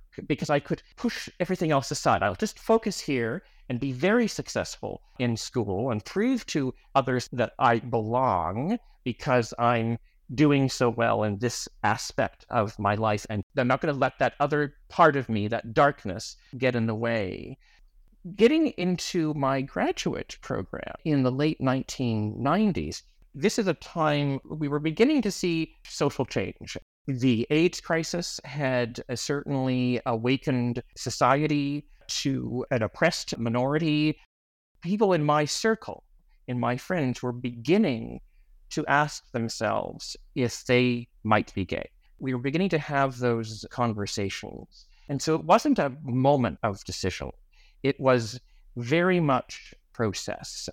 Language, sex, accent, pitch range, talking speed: English, male, American, 120-155 Hz, 140 wpm